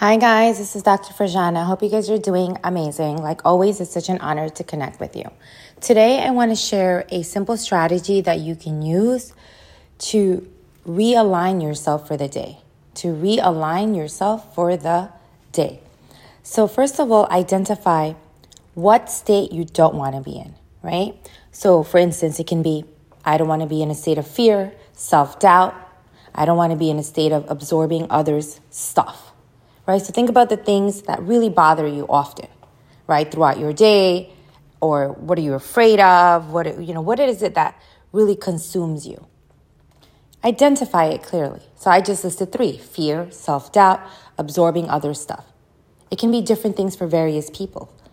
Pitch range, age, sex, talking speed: 150-205 Hz, 30-49, female, 175 wpm